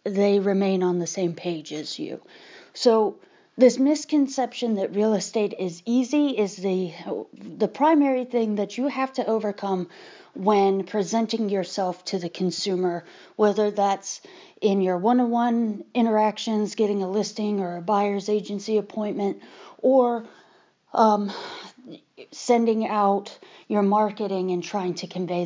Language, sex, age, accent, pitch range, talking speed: English, female, 30-49, American, 190-240 Hz, 130 wpm